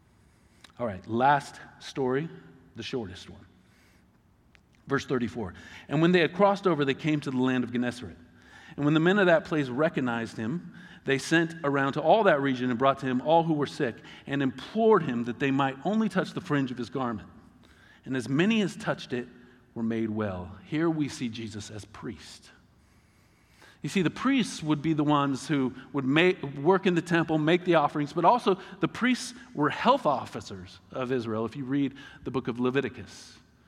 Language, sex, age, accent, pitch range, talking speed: English, male, 40-59, American, 130-185 Hz, 190 wpm